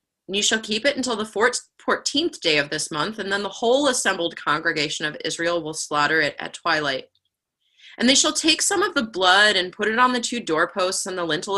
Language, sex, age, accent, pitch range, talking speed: English, female, 20-39, American, 170-240 Hz, 225 wpm